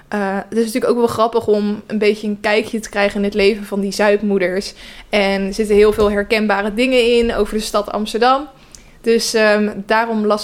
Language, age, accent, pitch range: Dutch, 20-39, Dutch, 205-240 Hz